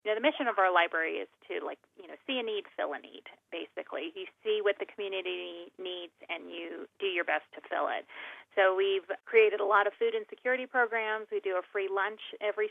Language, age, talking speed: English, 30-49, 225 wpm